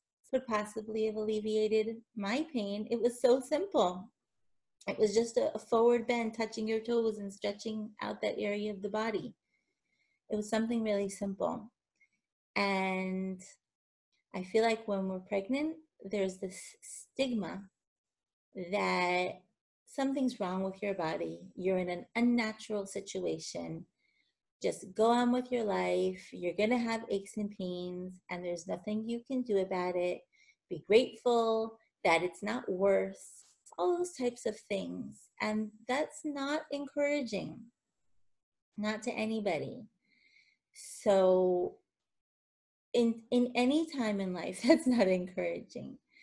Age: 30-49